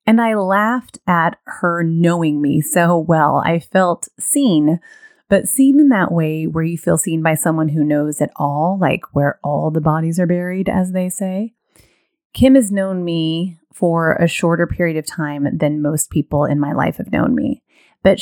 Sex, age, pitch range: female, 30-49, 160-220 Hz